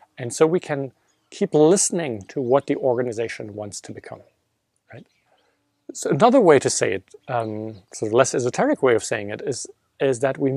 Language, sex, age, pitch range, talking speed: English, male, 40-59, 110-145 Hz, 185 wpm